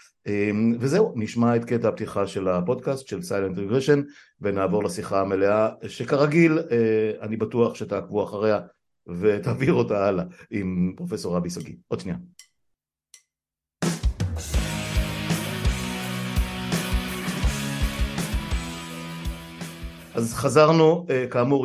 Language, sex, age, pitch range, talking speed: Hebrew, male, 60-79, 95-125 Hz, 90 wpm